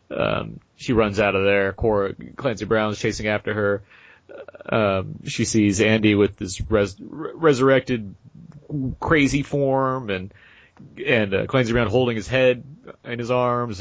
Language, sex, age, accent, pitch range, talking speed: English, male, 30-49, American, 100-125 Hz, 150 wpm